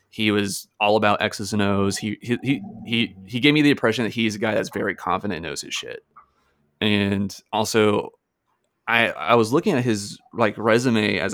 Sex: male